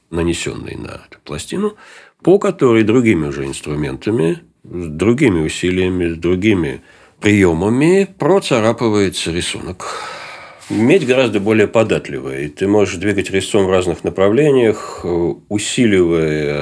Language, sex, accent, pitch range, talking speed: Russian, male, native, 85-120 Hz, 100 wpm